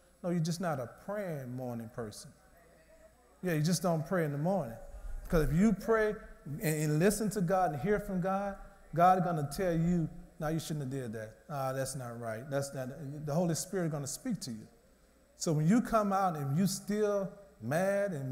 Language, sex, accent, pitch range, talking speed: English, male, American, 135-185 Hz, 215 wpm